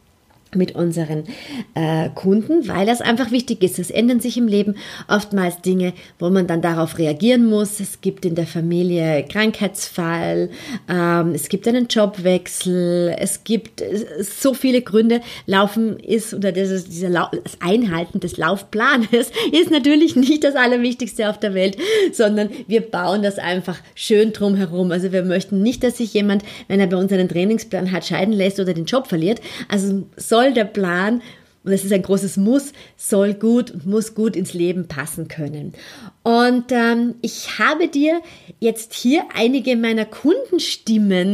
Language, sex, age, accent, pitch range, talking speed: German, female, 30-49, German, 180-230 Hz, 165 wpm